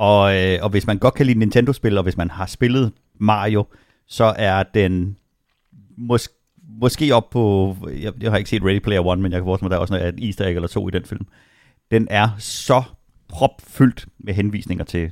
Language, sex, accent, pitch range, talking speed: Danish, male, native, 90-110 Hz, 205 wpm